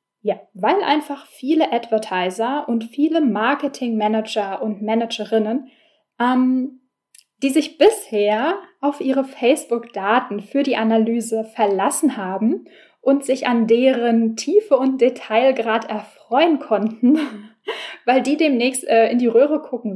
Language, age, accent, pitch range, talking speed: German, 10-29, German, 220-275 Hz, 115 wpm